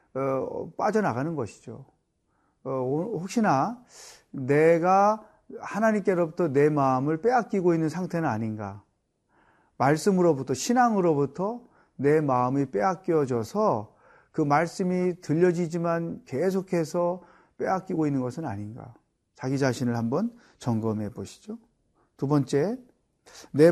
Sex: male